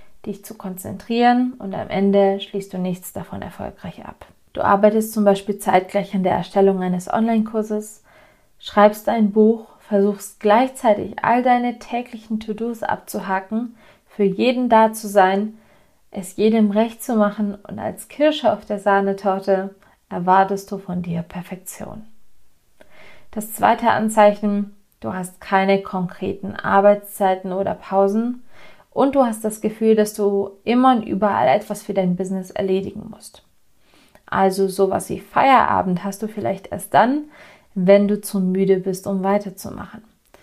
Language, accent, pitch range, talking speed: German, German, 195-220 Hz, 140 wpm